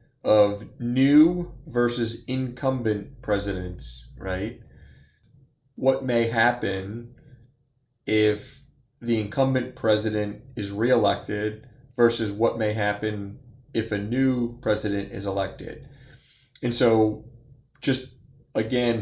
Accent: American